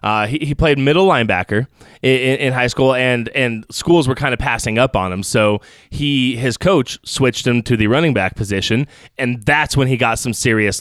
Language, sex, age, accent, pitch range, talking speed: English, male, 20-39, American, 120-155 Hz, 215 wpm